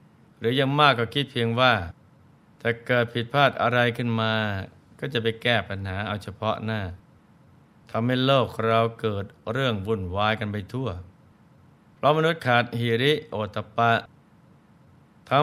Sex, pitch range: male, 105-125 Hz